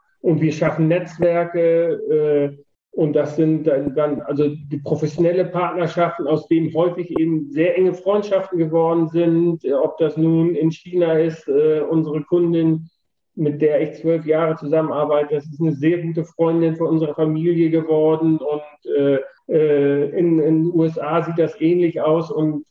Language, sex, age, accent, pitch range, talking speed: German, male, 40-59, German, 155-175 Hz, 155 wpm